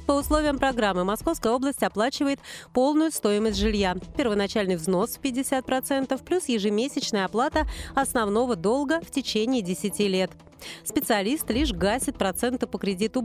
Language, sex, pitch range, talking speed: Russian, female, 200-275 Hz, 125 wpm